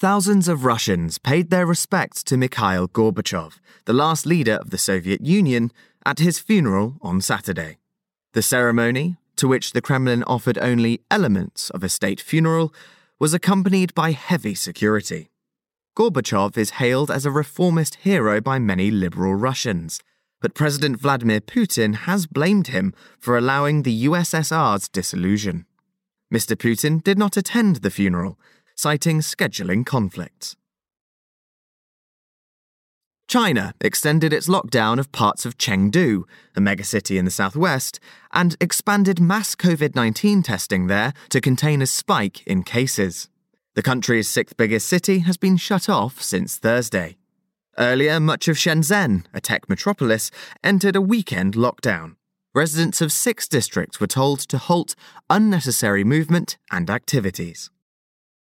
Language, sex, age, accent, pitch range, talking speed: English, male, 20-39, British, 110-180 Hz, 135 wpm